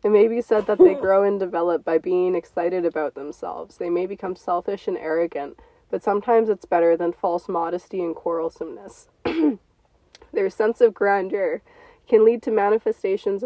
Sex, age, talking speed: female, 20-39, 165 wpm